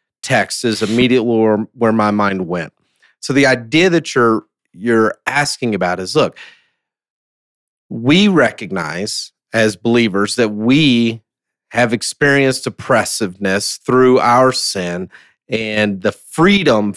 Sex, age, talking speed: male, 40-59, 115 wpm